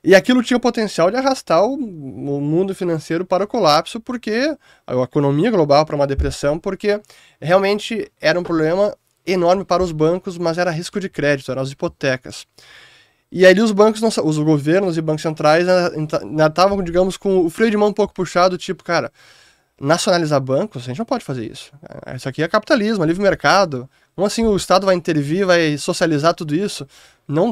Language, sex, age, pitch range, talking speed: Portuguese, male, 20-39, 145-195 Hz, 190 wpm